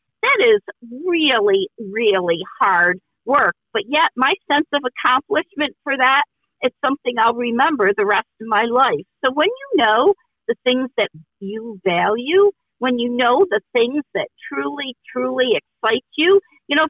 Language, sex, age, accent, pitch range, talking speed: English, female, 50-69, American, 220-310 Hz, 155 wpm